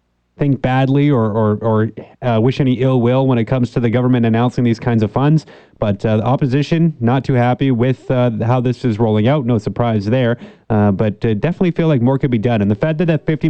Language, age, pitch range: English, 30-49, 115-145 Hz